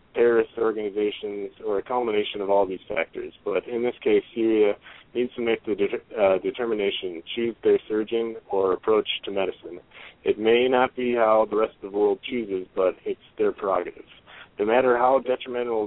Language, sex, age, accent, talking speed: English, male, 40-59, American, 180 wpm